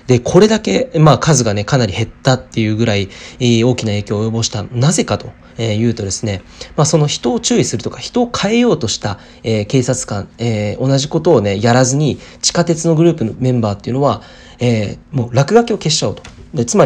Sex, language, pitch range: male, Japanese, 110-150 Hz